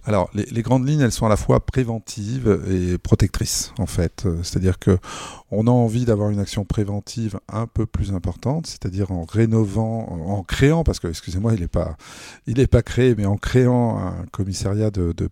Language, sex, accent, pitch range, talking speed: French, male, French, 90-115 Hz, 195 wpm